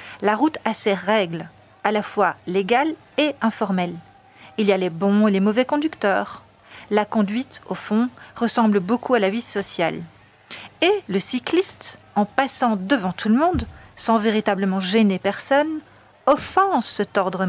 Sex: female